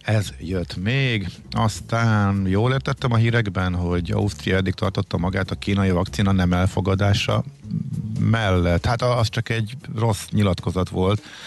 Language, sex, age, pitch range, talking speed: Hungarian, male, 50-69, 85-110 Hz, 135 wpm